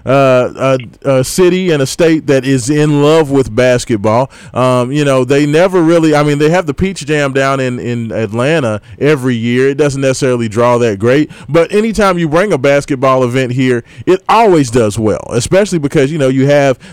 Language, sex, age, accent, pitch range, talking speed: English, male, 30-49, American, 120-155 Hz, 190 wpm